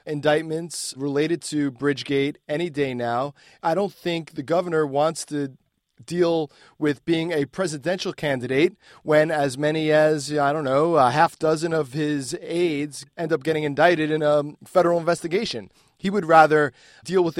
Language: English